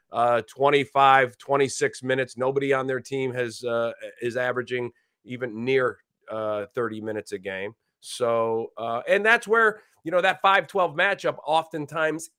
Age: 30-49